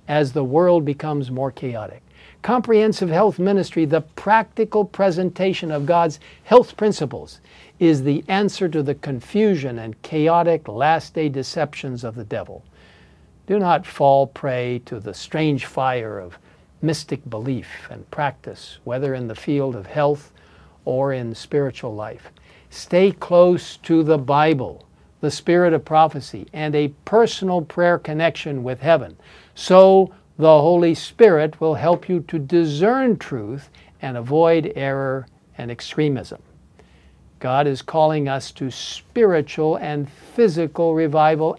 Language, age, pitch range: English, 60-79, 135-175 Hz